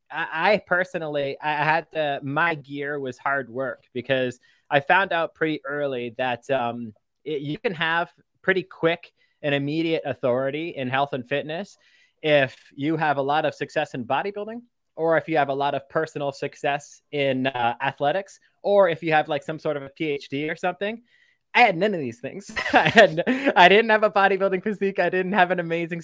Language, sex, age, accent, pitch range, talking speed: English, male, 20-39, American, 140-170 Hz, 190 wpm